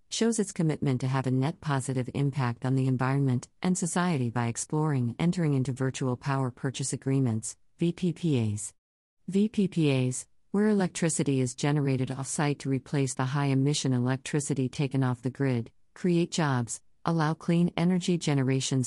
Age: 50-69